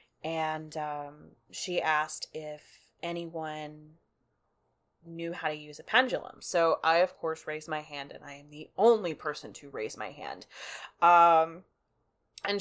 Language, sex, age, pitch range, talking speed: English, female, 20-39, 155-185 Hz, 150 wpm